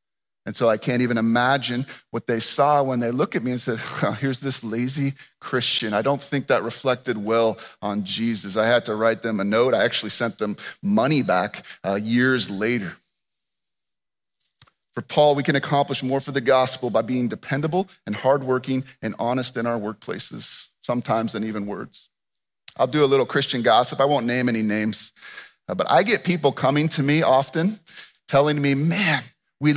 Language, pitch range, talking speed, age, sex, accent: English, 125-180 Hz, 185 wpm, 30-49, male, American